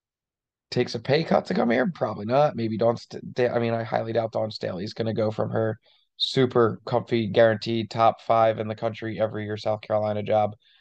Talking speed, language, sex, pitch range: 200 wpm, English, male, 110-125 Hz